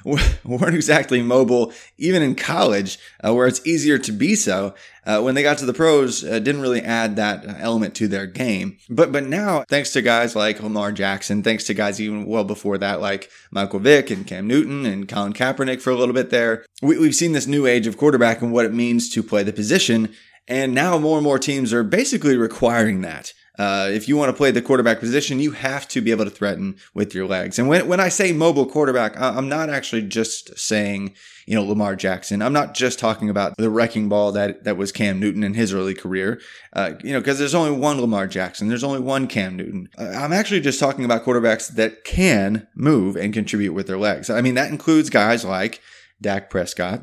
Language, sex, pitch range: English, male, 105-140 Hz